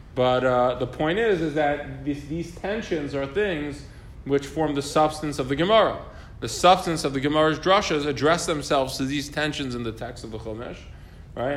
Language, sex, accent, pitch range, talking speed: English, male, American, 115-155 Hz, 190 wpm